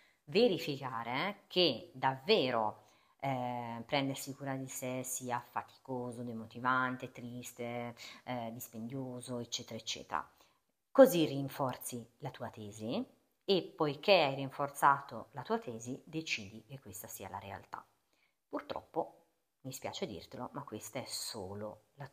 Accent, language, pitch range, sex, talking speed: native, Italian, 120-150 Hz, female, 115 wpm